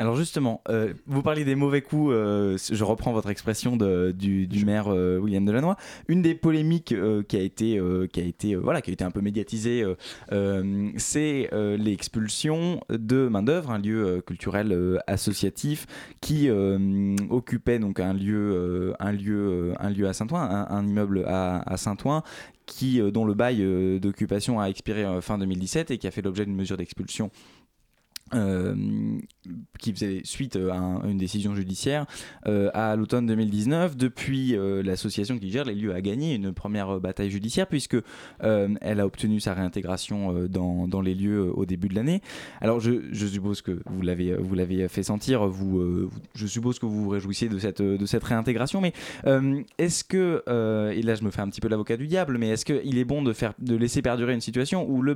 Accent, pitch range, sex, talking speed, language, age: French, 95-125 Hz, male, 195 wpm, French, 20-39